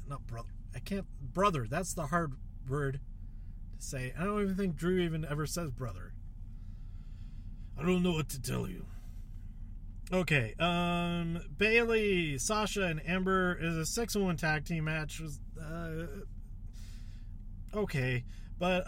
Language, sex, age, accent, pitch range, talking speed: English, male, 30-49, American, 110-175 Hz, 135 wpm